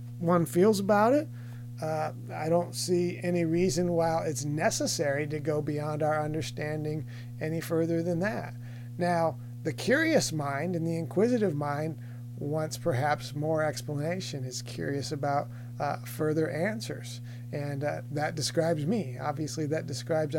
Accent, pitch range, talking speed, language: American, 125-165 Hz, 140 wpm, English